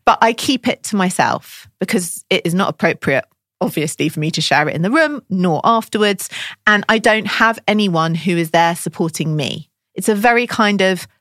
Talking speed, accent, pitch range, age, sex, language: 200 wpm, British, 165-235 Hz, 30-49, female, English